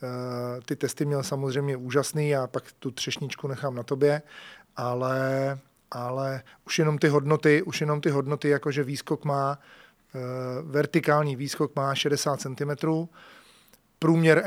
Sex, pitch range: male, 130-145 Hz